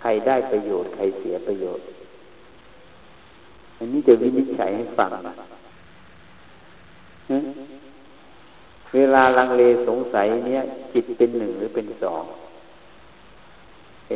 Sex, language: male, Thai